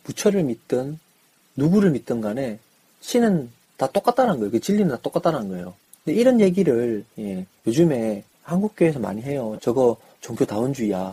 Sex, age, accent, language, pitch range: male, 40-59, native, Korean, 115-175 Hz